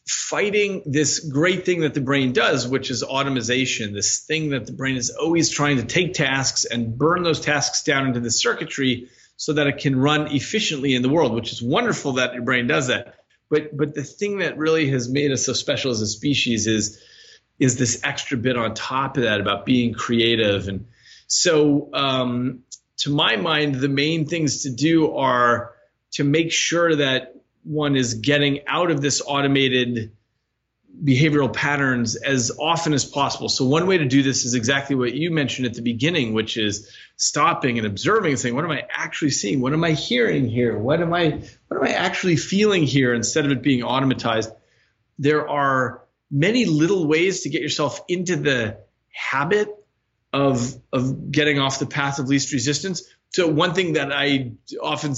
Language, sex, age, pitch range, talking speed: English, male, 30-49, 125-155 Hz, 190 wpm